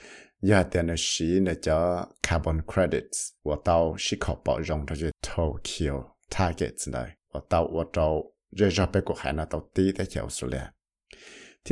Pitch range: 80-100 Hz